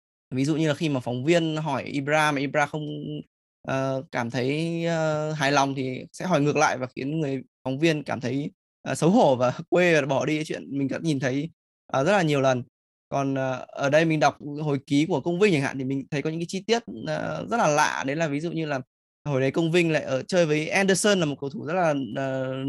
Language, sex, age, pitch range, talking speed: Vietnamese, male, 20-39, 130-160 Hz, 255 wpm